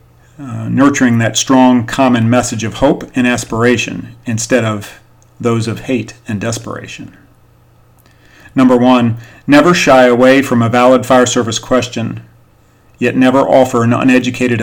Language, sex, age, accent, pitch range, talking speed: English, male, 40-59, American, 115-130 Hz, 135 wpm